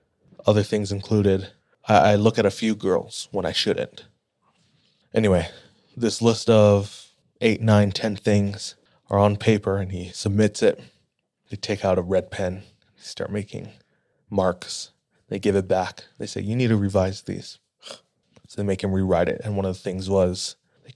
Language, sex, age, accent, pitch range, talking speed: English, male, 20-39, American, 100-115 Hz, 175 wpm